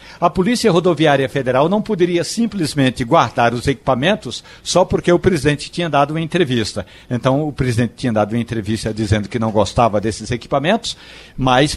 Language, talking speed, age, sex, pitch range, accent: Portuguese, 165 wpm, 60-79, male, 125-170 Hz, Brazilian